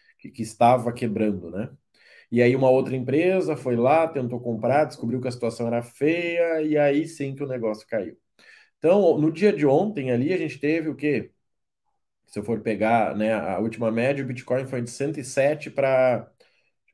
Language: Portuguese